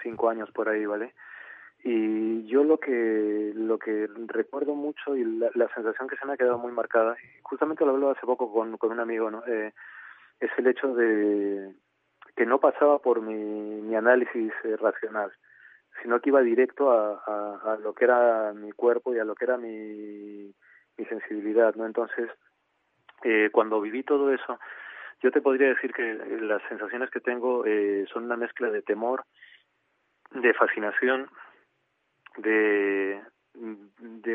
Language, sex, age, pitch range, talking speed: Spanish, male, 30-49, 105-125 Hz, 165 wpm